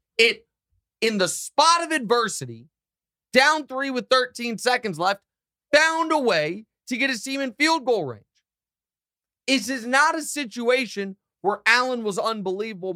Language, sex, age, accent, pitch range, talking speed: English, male, 30-49, American, 165-240 Hz, 150 wpm